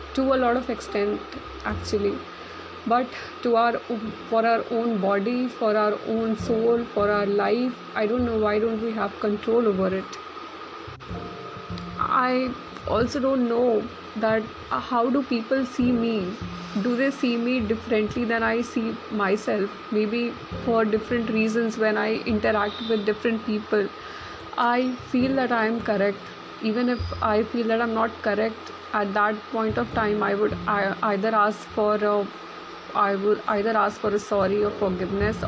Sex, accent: female, native